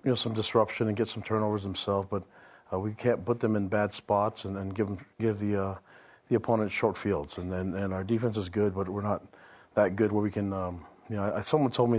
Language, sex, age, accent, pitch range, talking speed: English, male, 40-59, American, 105-115 Hz, 260 wpm